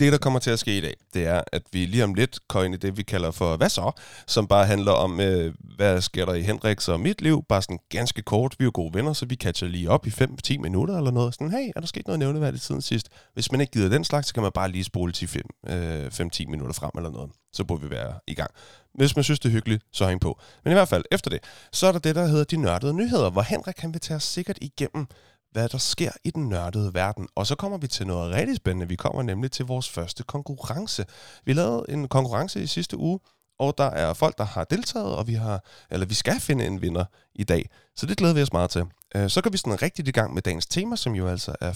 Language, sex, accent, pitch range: Danish, male, native, 95-145 Hz